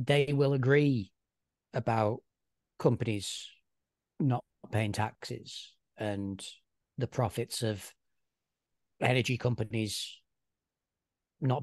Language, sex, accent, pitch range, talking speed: English, male, British, 110-130 Hz, 75 wpm